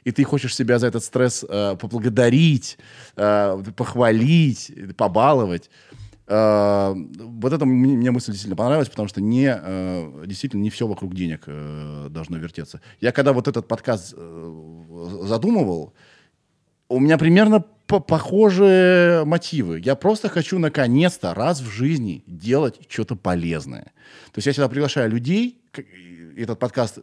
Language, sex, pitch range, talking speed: Russian, male, 100-145 Hz, 135 wpm